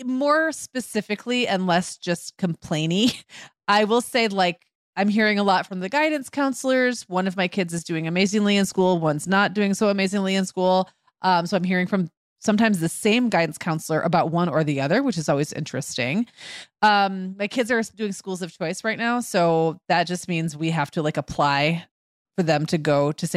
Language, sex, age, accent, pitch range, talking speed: English, female, 30-49, American, 160-205 Hz, 200 wpm